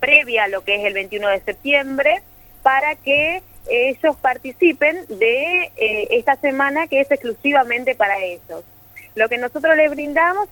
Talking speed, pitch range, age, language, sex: 155 wpm, 210-290 Hz, 20-39, Spanish, female